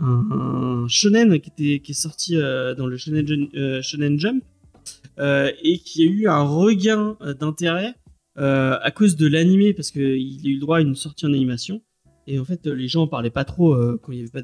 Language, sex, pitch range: French, male, 125-175 Hz